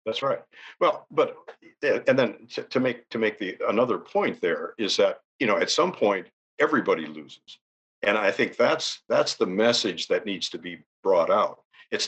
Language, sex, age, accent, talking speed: English, male, 50-69, American, 190 wpm